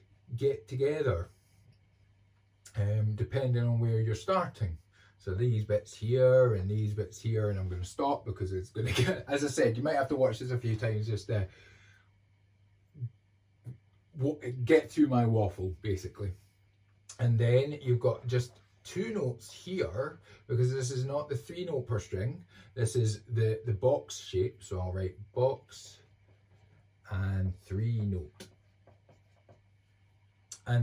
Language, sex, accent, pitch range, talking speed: English, male, British, 100-115 Hz, 150 wpm